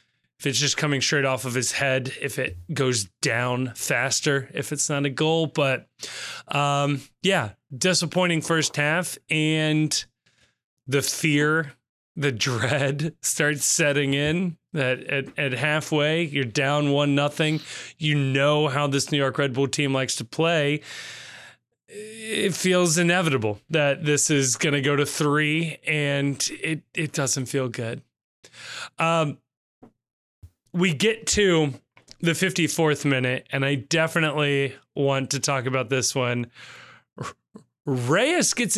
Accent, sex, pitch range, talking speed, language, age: American, male, 140-165 Hz, 135 wpm, English, 30-49